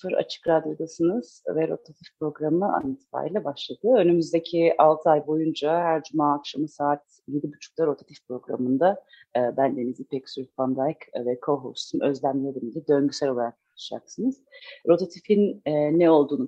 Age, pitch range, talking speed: 40-59, 145-180 Hz, 120 wpm